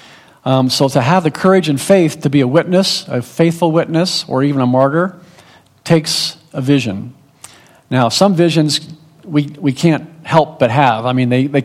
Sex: male